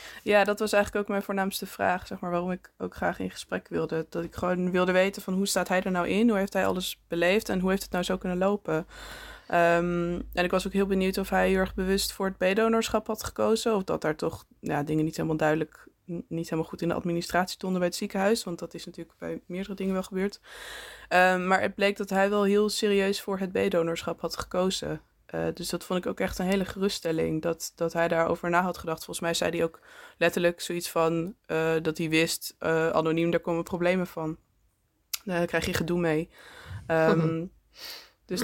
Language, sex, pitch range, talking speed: Dutch, female, 165-190 Hz, 225 wpm